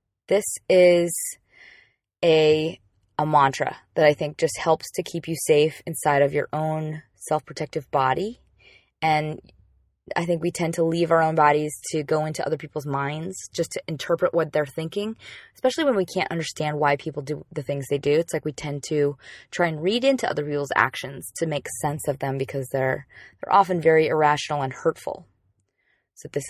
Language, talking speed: English, 185 wpm